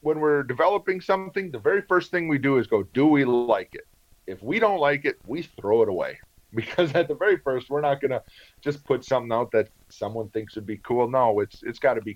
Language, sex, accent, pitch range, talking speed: English, male, American, 110-140 Hz, 240 wpm